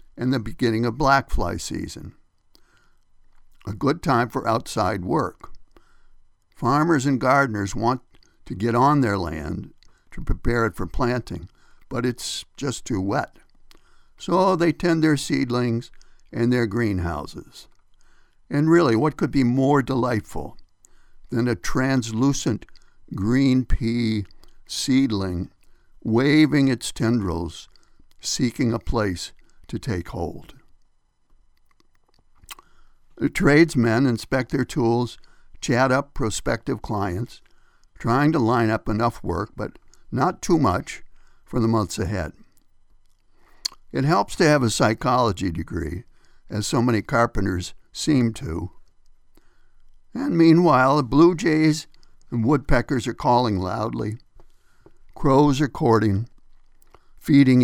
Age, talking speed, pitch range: 60-79, 115 wpm, 105-135 Hz